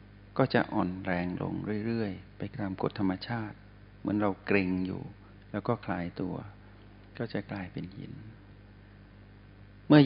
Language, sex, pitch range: Thai, male, 100-115 Hz